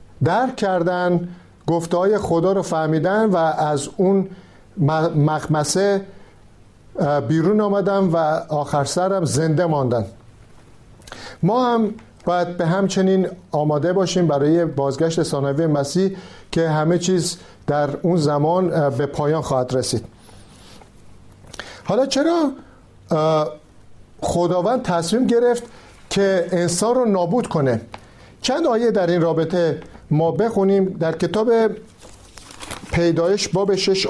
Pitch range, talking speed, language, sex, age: 145-195 Hz, 105 wpm, Persian, male, 50-69